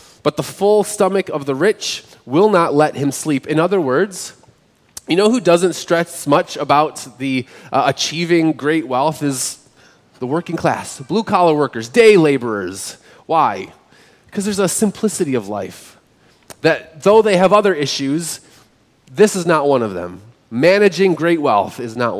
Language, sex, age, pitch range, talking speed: English, male, 30-49, 130-180 Hz, 160 wpm